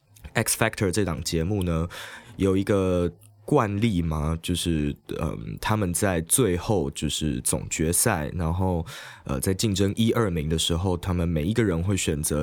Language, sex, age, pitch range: Chinese, male, 20-39, 85-105 Hz